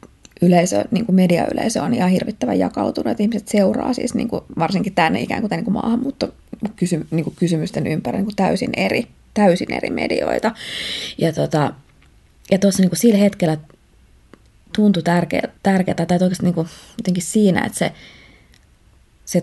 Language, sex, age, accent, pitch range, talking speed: Finnish, female, 20-39, native, 165-215 Hz, 120 wpm